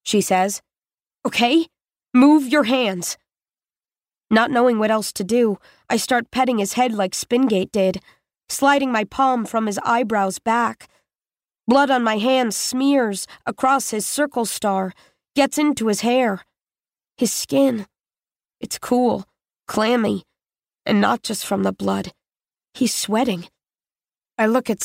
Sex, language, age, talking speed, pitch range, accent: female, English, 20-39, 135 wpm, 215-275 Hz, American